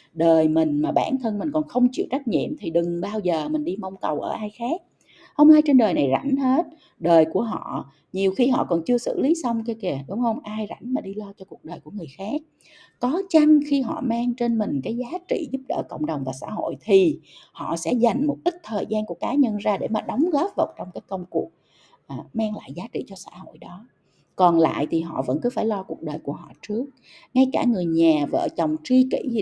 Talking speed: 250 wpm